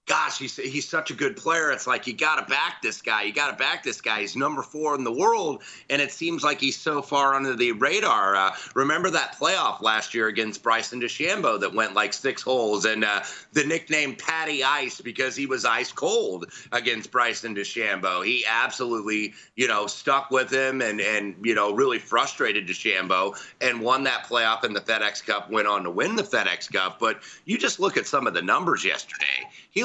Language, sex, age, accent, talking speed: English, male, 30-49, American, 205 wpm